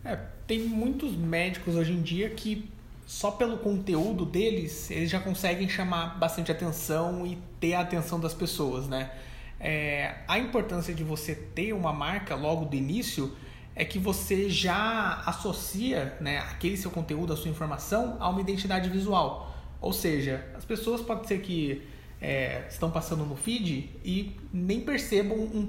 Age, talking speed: 20-39, 155 wpm